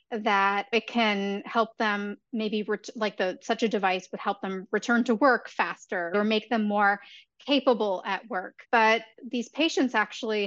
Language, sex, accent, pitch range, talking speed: English, female, American, 205-250 Hz, 170 wpm